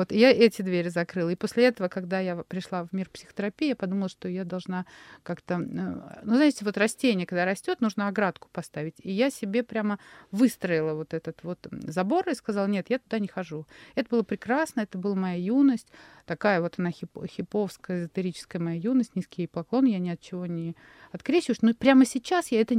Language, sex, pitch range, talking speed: Russian, female, 185-235 Hz, 190 wpm